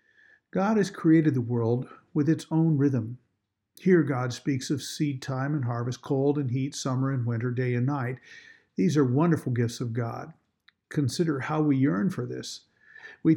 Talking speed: 175 wpm